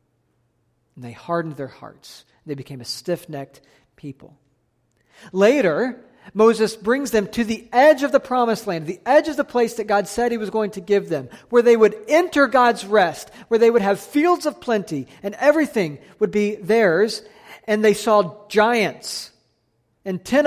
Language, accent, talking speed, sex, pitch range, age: English, American, 175 wpm, male, 175-225 Hz, 40-59